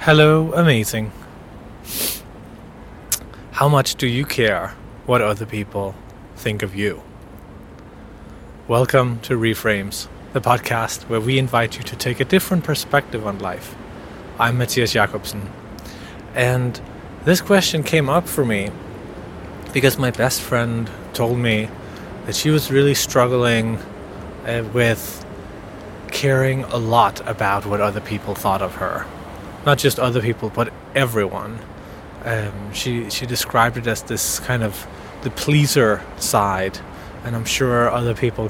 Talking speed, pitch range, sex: 130 wpm, 100-125 Hz, male